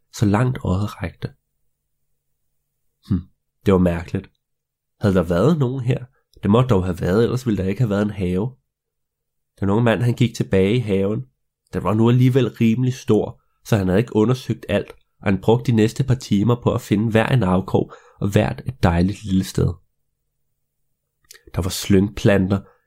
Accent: native